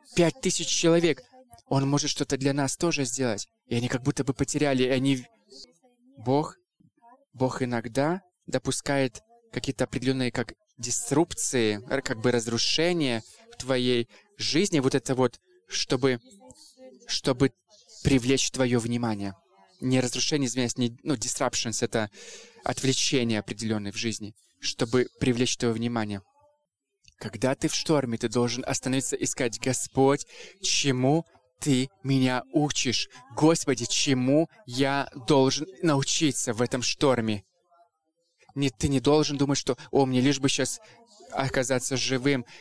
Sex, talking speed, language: male, 125 wpm, English